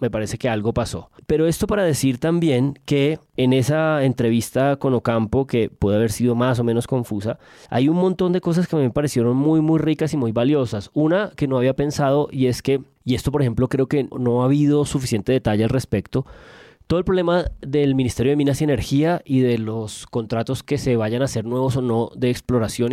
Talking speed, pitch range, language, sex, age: 215 wpm, 120-150 Hz, Spanish, male, 20-39